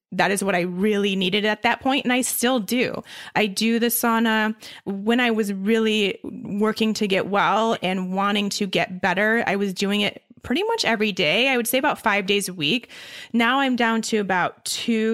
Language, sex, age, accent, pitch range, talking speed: English, female, 20-39, American, 190-230 Hz, 205 wpm